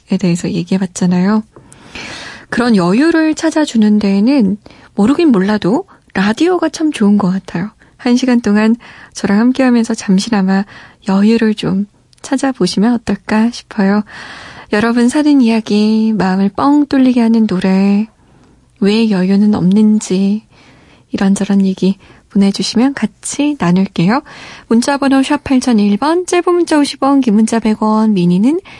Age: 20-39